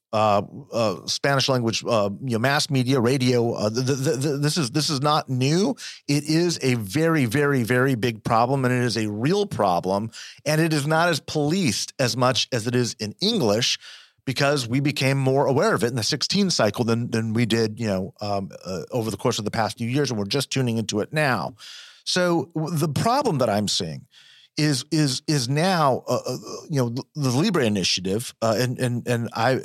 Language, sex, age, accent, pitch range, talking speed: English, male, 40-59, American, 115-145 Hz, 215 wpm